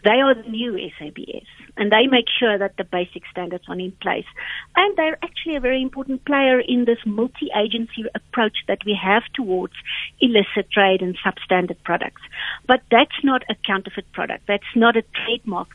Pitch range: 200-250 Hz